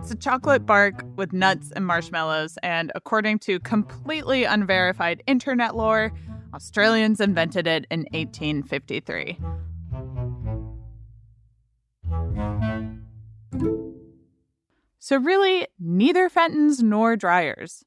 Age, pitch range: 20-39, 160-250 Hz